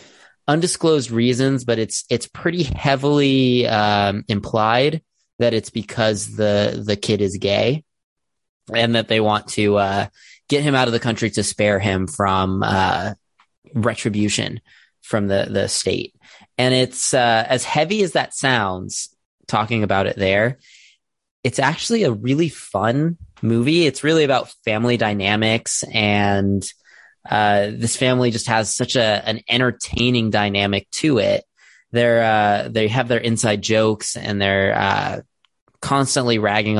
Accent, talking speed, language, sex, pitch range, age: American, 140 wpm, English, male, 105-125 Hz, 20-39